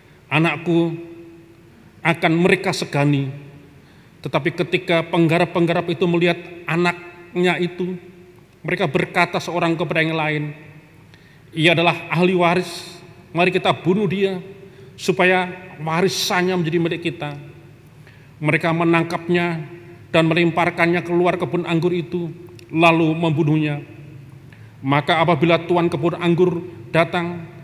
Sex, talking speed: male, 100 wpm